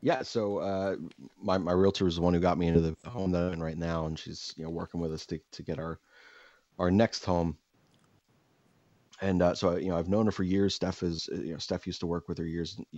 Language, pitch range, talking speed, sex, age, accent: English, 85-100 Hz, 255 wpm, male, 30-49, American